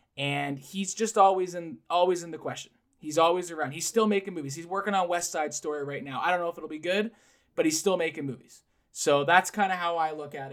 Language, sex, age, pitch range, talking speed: English, male, 20-39, 145-185 Hz, 250 wpm